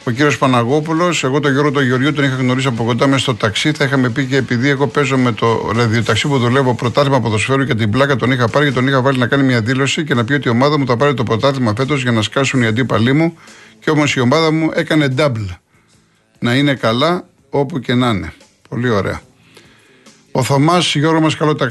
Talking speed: 230 wpm